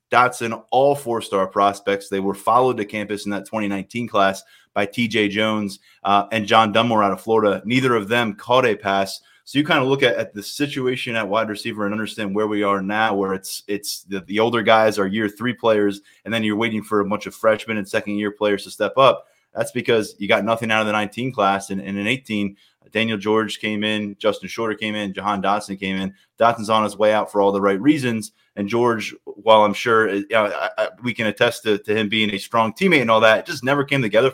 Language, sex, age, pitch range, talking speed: English, male, 20-39, 100-115 Hz, 230 wpm